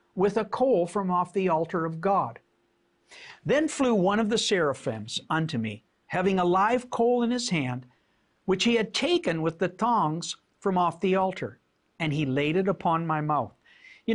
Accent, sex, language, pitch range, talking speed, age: American, male, English, 155-235 Hz, 180 wpm, 60-79